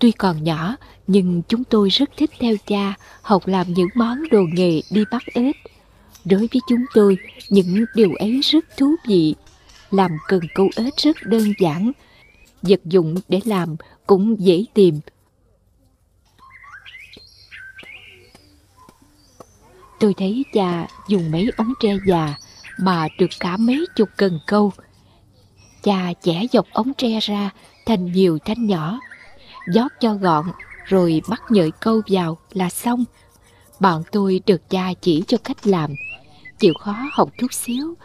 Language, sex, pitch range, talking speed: Vietnamese, female, 170-230 Hz, 145 wpm